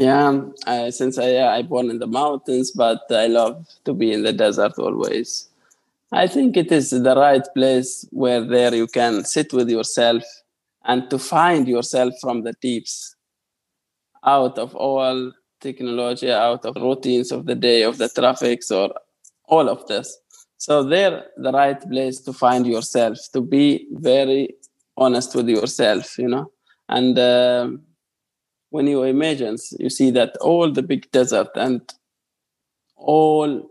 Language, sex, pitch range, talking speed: English, male, 120-140 Hz, 155 wpm